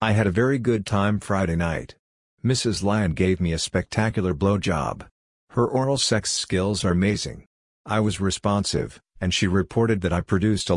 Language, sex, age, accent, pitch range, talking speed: English, male, 50-69, American, 90-105 Hz, 175 wpm